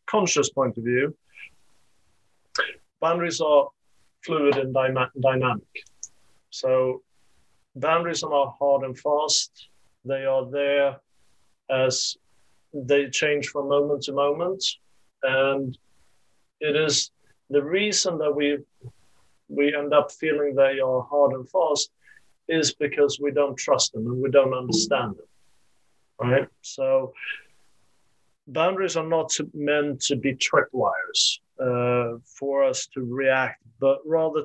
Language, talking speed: English, 125 wpm